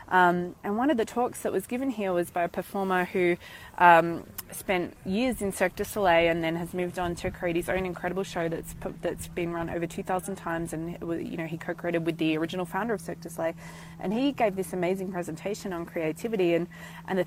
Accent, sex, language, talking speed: Australian, female, English, 230 wpm